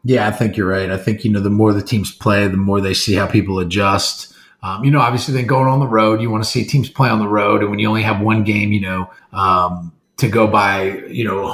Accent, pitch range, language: American, 105-130 Hz, English